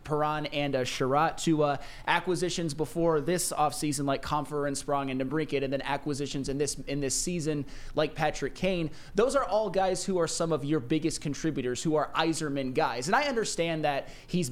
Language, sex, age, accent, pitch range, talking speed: English, male, 20-39, American, 135-170 Hz, 195 wpm